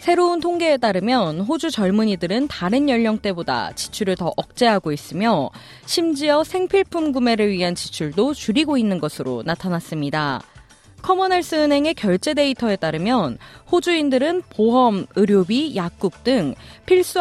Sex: female